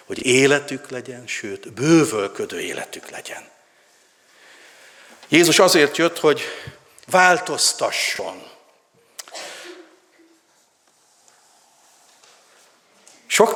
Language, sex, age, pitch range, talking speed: Hungarian, male, 60-79, 115-150 Hz, 60 wpm